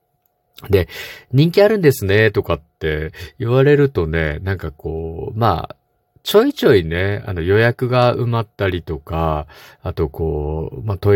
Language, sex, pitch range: Japanese, male, 90-135 Hz